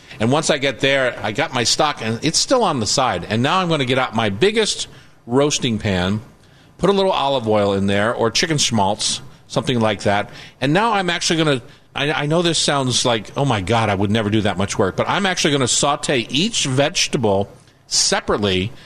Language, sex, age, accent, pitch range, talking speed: English, male, 50-69, American, 115-145 Hz, 220 wpm